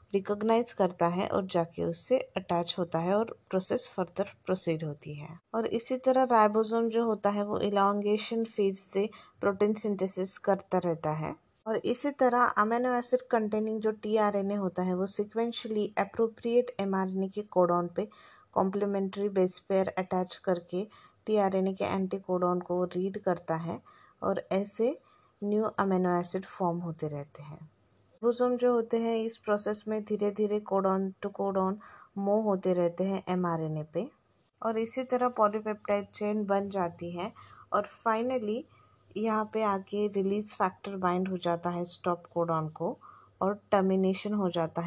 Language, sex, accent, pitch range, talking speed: English, female, Indian, 175-215 Hz, 150 wpm